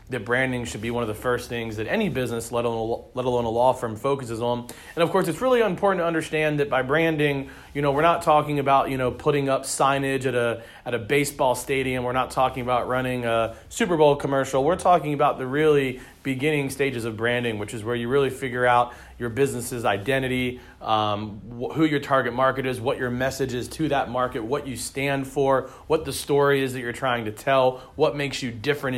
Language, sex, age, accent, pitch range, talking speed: English, male, 30-49, American, 120-145 Hz, 220 wpm